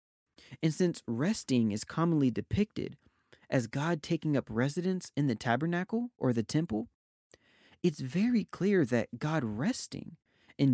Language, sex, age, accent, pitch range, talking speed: English, male, 30-49, American, 120-170 Hz, 135 wpm